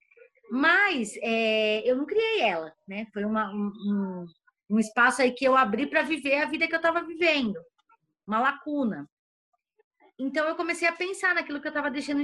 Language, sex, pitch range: Portuguese, female, 245-330 Hz